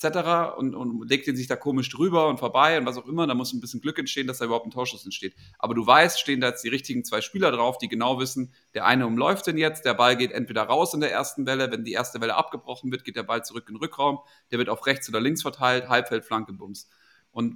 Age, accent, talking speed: 40-59, German, 270 wpm